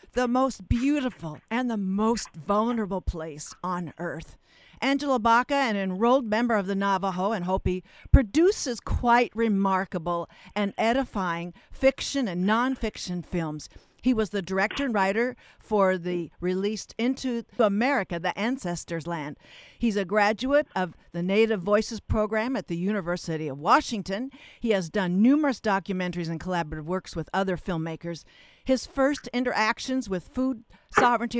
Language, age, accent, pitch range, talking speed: English, 50-69, American, 175-245 Hz, 140 wpm